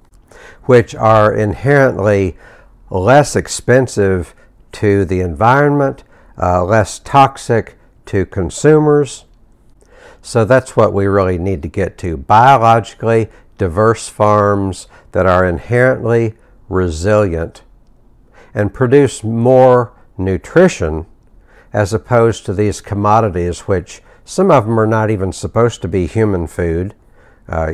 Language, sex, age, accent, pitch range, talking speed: English, male, 60-79, American, 95-115 Hz, 110 wpm